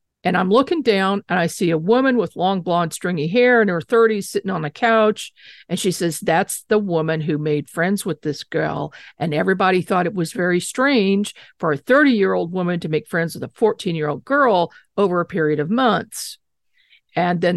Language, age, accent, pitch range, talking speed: English, 50-69, American, 165-215 Hz, 200 wpm